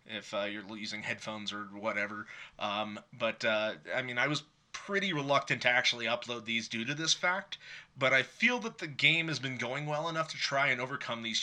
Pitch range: 110-145 Hz